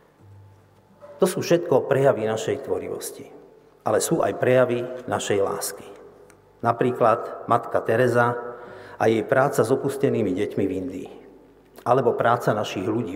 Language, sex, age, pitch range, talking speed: Slovak, male, 50-69, 120-190 Hz, 125 wpm